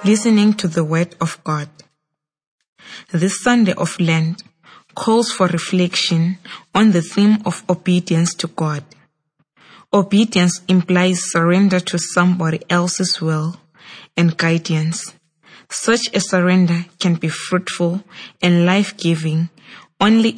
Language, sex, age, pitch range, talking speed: English, female, 20-39, 165-190 Hz, 110 wpm